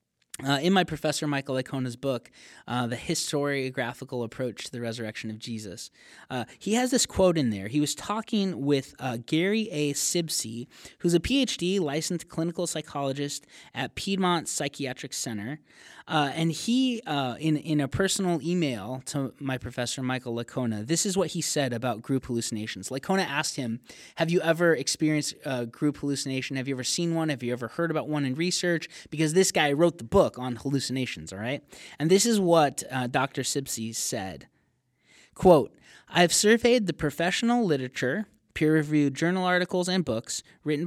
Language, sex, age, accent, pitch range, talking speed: English, male, 20-39, American, 130-170 Hz, 170 wpm